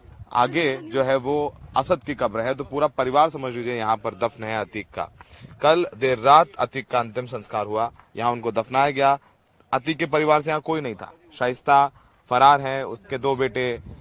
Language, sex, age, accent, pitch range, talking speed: Hindi, male, 30-49, native, 120-145 Hz, 195 wpm